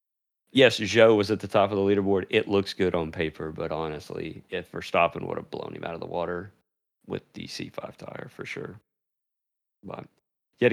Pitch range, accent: 90-120 Hz, American